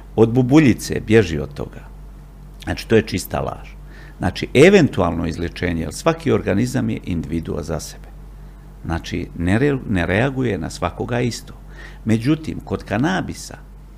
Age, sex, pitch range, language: 50-69, male, 90-135 Hz, Croatian